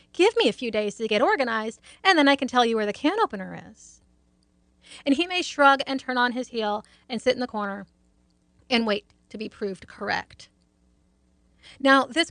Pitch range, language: 185-250 Hz, English